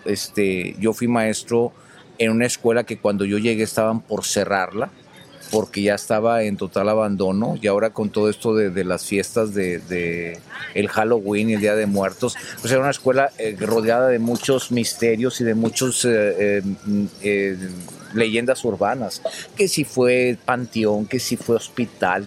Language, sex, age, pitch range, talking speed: Spanish, male, 40-59, 105-130 Hz, 165 wpm